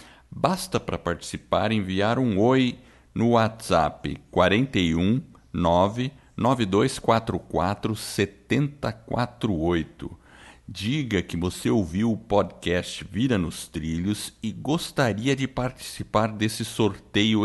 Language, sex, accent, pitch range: Portuguese, male, Brazilian, 90-120 Hz